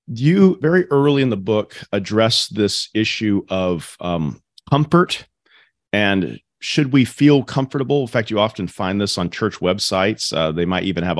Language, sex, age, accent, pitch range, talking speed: English, male, 40-59, American, 95-140 Hz, 165 wpm